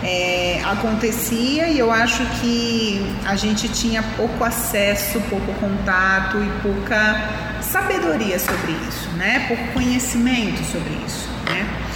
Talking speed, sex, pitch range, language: 115 wpm, female, 190-230 Hz, Portuguese